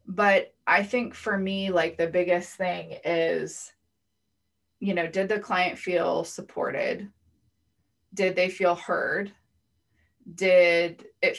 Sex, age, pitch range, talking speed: female, 20-39, 170-195 Hz, 120 wpm